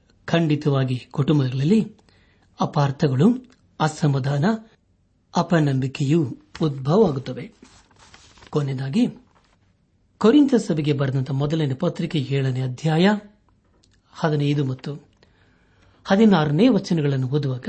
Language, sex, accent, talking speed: Kannada, male, native, 65 wpm